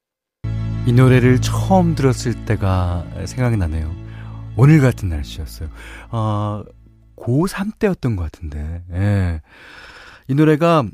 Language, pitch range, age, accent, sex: Korean, 95-160 Hz, 40-59, native, male